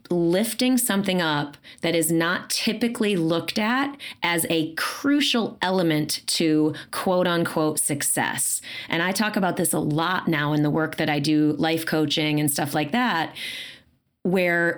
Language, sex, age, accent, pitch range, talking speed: English, female, 30-49, American, 155-205 Hz, 155 wpm